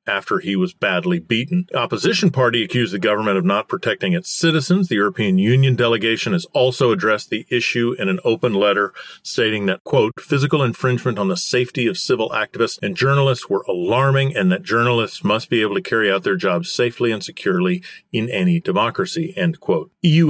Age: 40-59